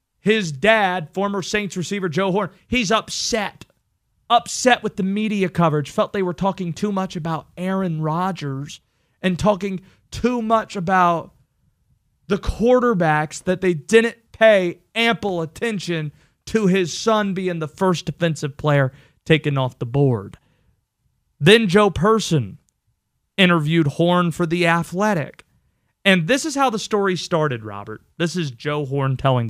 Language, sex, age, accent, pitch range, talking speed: English, male, 30-49, American, 150-200 Hz, 140 wpm